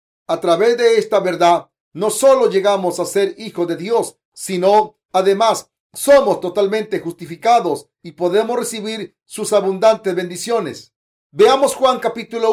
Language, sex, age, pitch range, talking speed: Spanish, male, 40-59, 185-235 Hz, 130 wpm